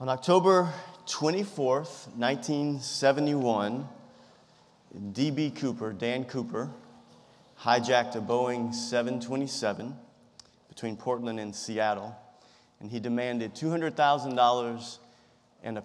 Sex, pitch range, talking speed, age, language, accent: male, 115-135 Hz, 85 wpm, 30-49, English, American